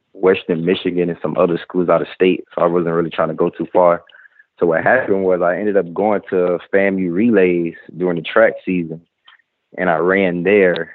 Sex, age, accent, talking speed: male, 20-39, American, 205 wpm